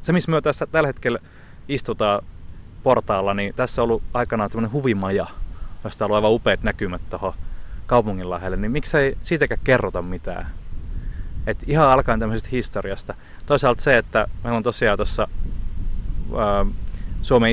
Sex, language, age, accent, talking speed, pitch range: male, Finnish, 20-39, native, 145 wpm, 95-125 Hz